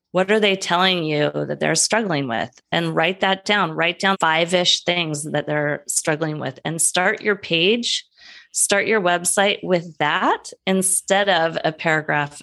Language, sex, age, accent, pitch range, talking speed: English, female, 30-49, American, 145-185 Hz, 165 wpm